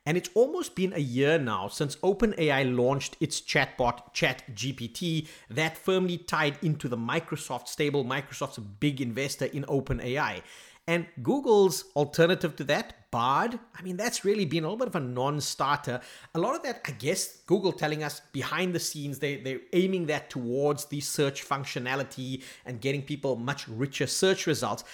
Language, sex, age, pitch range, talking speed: English, male, 30-49, 130-170 Hz, 165 wpm